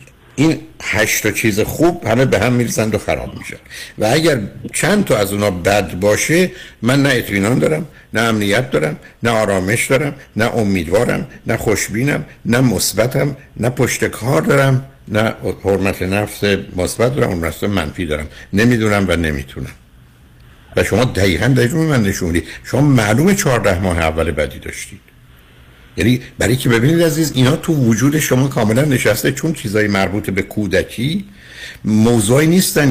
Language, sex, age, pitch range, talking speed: Persian, male, 60-79, 95-125 Hz, 145 wpm